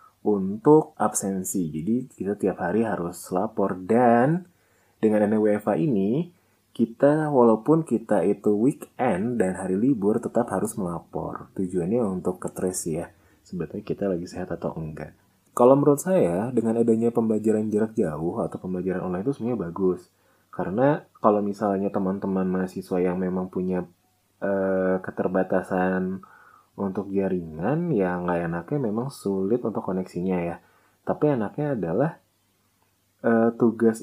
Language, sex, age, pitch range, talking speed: Indonesian, male, 20-39, 95-115 Hz, 125 wpm